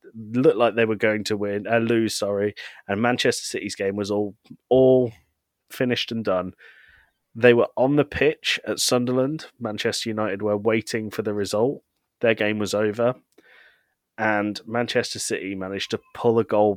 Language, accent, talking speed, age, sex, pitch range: English, British, 165 wpm, 30-49, male, 105-120 Hz